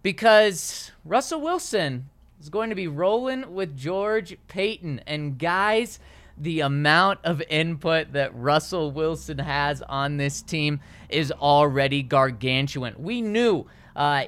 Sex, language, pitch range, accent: male, English, 145-195 Hz, American